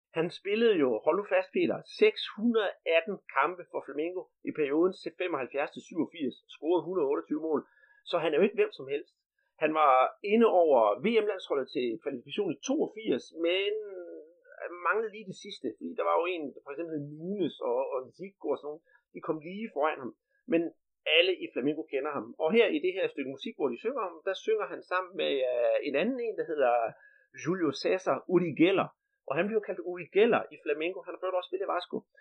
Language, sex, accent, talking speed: Danish, male, native, 195 wpm